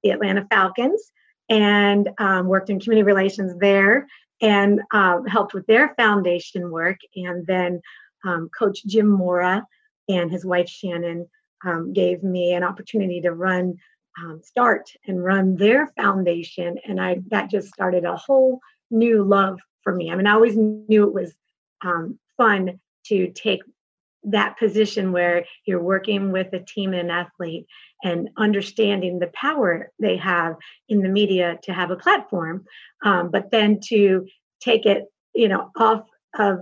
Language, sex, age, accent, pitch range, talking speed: English, female, 30-49, American, 175-210 Hz, 155 wpm